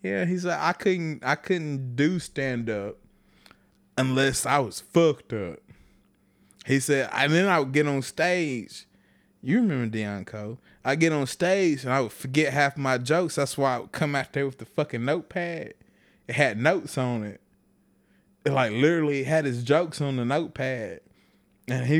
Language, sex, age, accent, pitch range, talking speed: English, male, 20-39, American, 115-180 Hz, 185 wpm